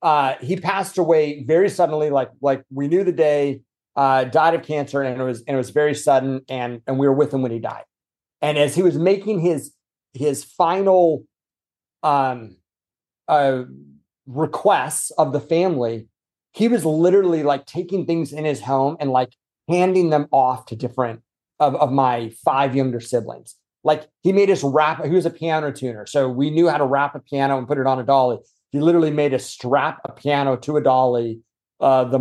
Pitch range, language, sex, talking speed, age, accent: 130-160 Hz, English, male, 195 wpm, 30-49, American